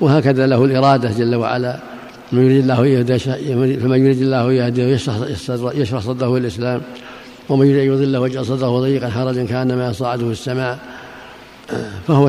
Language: Arabic